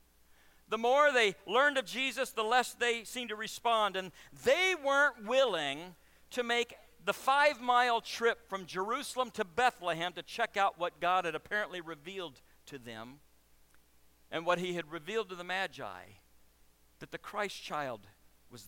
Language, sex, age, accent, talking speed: English, male, 50-69, American, 155 wpm